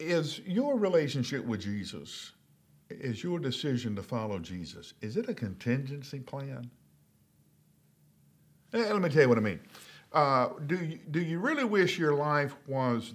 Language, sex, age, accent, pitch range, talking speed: English, male, 50-69, American, 105-140 Hz, 145 wpm